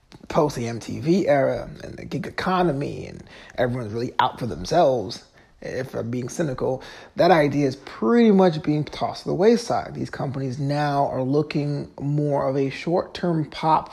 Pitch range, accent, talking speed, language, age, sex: 145-185 Hz, American, 170 wpm, English, 30-49, male